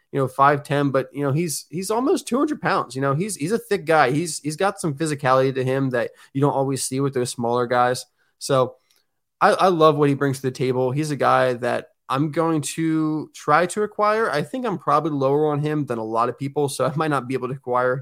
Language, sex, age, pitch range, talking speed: English, male, 20-39, 130-165 Hz, 250 wpm